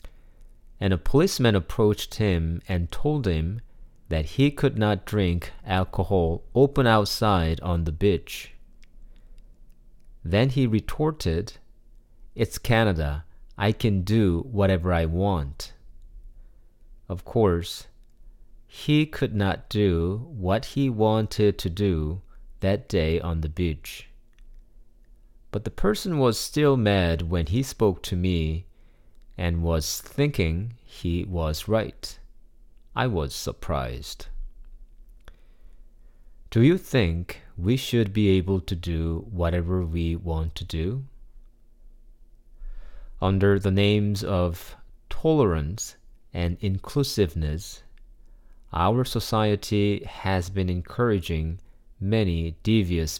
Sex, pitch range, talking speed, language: male, 85-115 Hz, 105 wpm, English